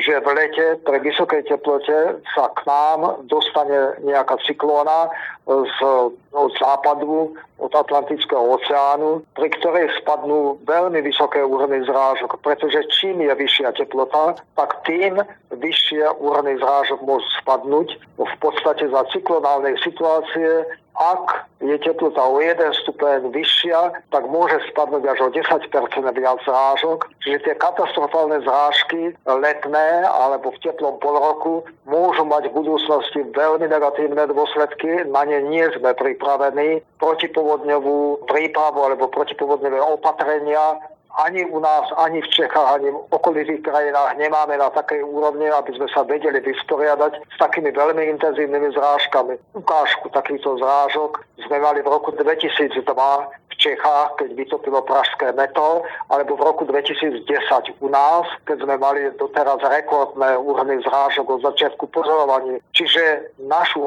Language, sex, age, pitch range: Slovak, male, 40-59, 140-160 Hz